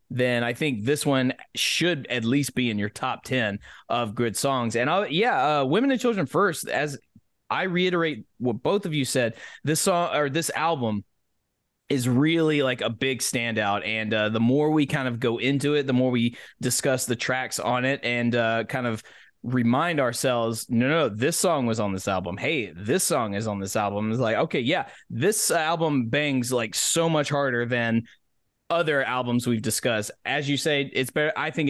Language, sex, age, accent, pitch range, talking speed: English, male, 20-39, American, 115-140 Hz, 205 wpm